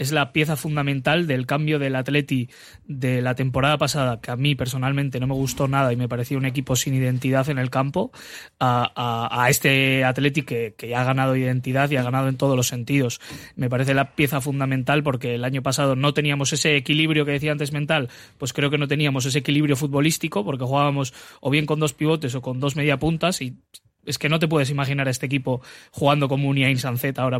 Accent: Spanish